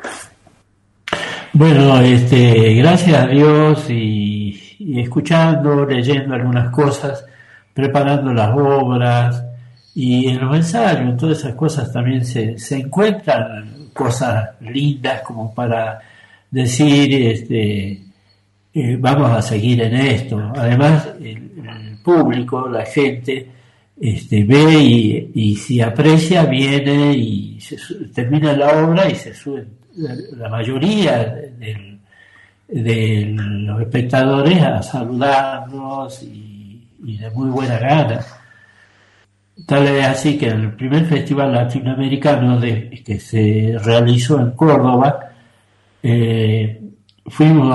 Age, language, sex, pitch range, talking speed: 60-79, Spanish, male, 115-140 Hz, 110 wpm